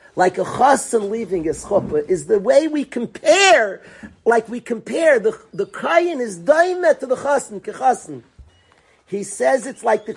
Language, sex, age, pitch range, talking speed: English, male, 50-69, 205-260 Hz, 165 wpm